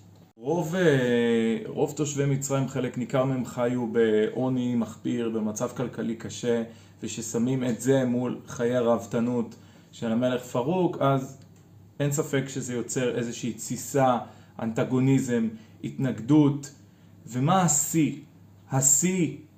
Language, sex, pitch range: Hebrew, male, 115-145 Hz